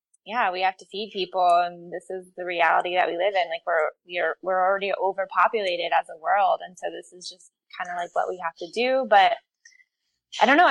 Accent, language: American, English